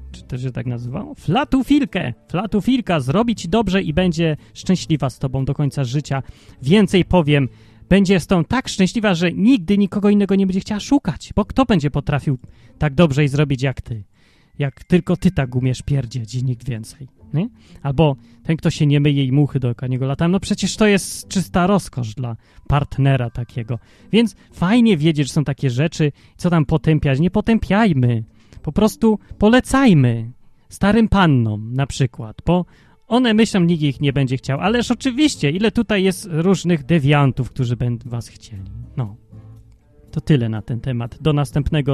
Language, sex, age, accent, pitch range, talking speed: Polish, male, 30-49, native, 130-200 Hz, 170 wpm